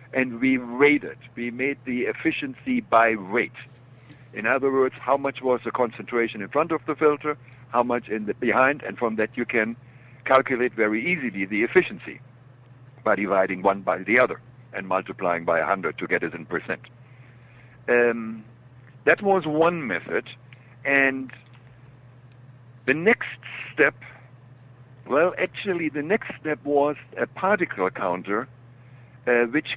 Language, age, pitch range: English, 60-79, 120-140 Hz